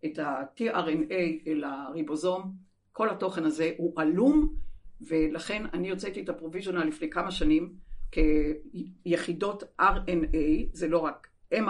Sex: female